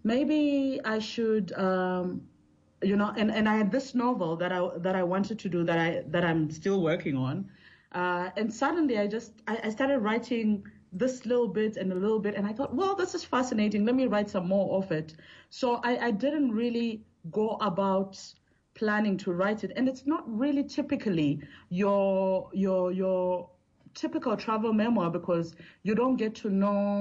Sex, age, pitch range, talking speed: female, 30-49, 180-225 Hz, 185 wpm